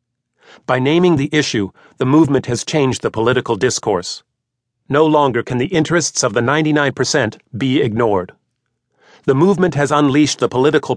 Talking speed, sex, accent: 150 wpm, male, American